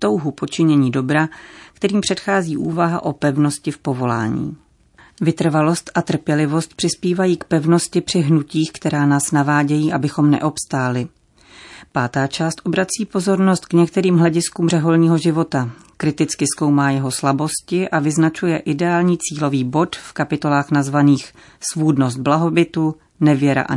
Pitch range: 145-170 Hz